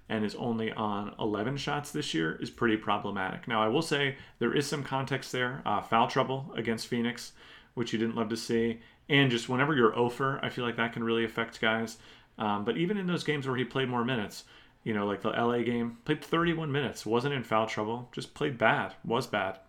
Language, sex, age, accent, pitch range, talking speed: English, male, 30-49, American, 110-125 Hz, 225 wpm